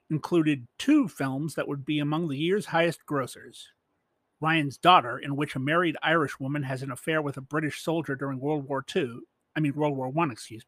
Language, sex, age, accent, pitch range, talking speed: English, male, 40-59, American, 140-170 Hz, 200 wpm